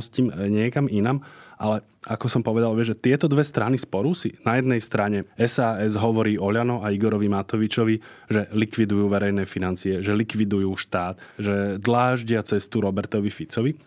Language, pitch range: Slovak, 105-130 Hz